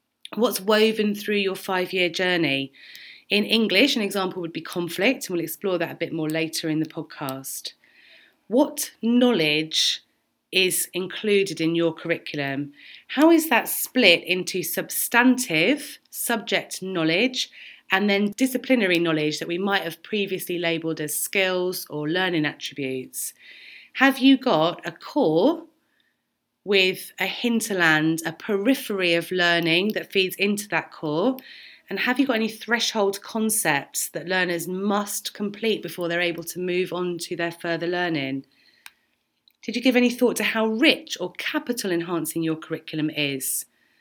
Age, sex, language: 30-49, female, English